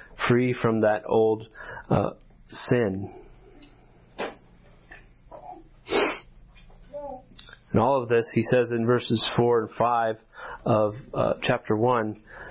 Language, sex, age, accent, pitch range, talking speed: English, male, 30-49, American, 110-135 Hz, 100 wpm